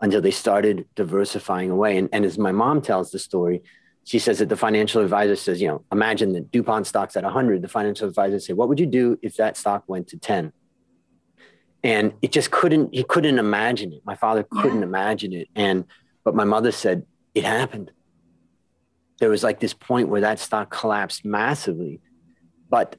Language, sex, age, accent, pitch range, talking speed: English, male, 30-49, American, 90-115 Hz, 190 wpm